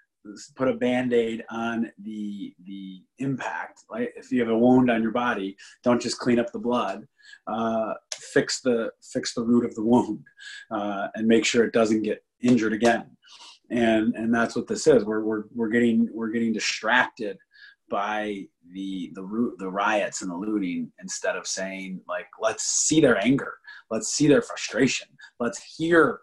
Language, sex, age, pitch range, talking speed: English, male, 30-49, 110-130 Hz, 175 wpm